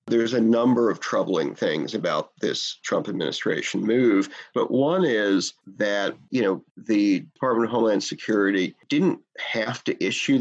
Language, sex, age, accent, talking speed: English, male, 40-59, American, 150 wpm